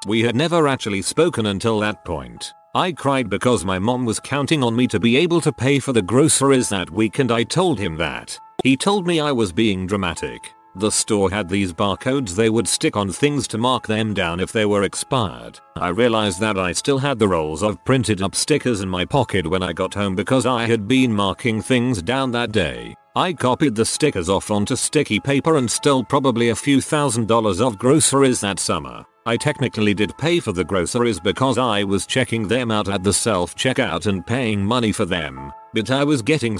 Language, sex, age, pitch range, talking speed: English, male, 40-59, 105-135 Hz, 210 wpm